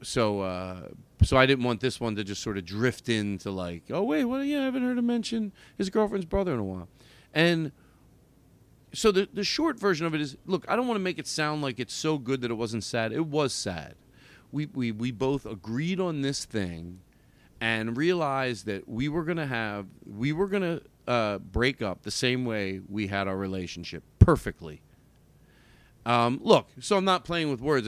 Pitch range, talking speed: 110-165 Hz, 210 wpm